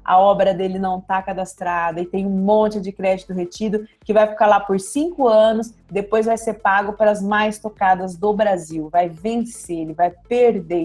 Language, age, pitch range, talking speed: Portuguese, 30-49, 185-255 Hz, 195 wpm